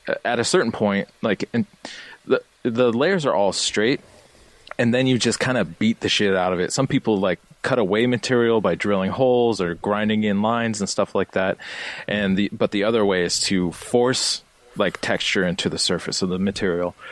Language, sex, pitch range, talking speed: English, male, 90-110 Hz, 200 wpm